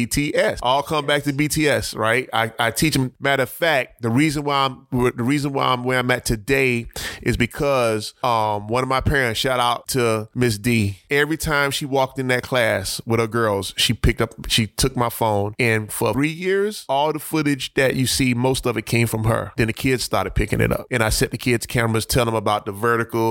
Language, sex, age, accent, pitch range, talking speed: English, male, 20-39, American, 115-145 Hz, 230 wpm